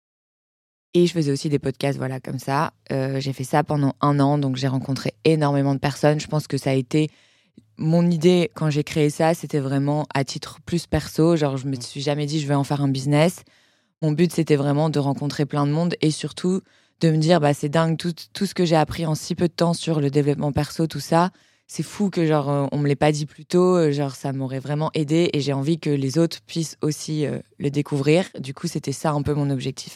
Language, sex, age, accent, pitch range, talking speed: French, female, 20-39, French, 140-160 Hz, 250 wpm